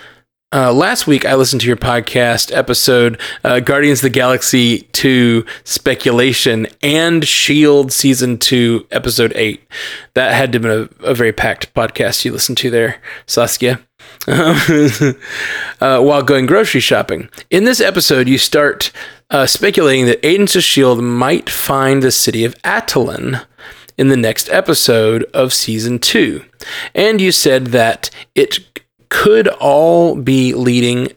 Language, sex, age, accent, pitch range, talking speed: English, male, 20-39, American, 120-145 Hz, 145 wpm